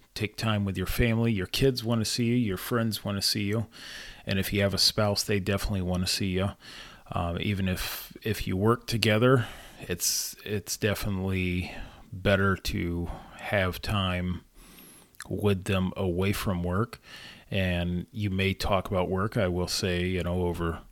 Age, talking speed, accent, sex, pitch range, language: 30-49, 170 wpm, American, male, 90-105 Hz, English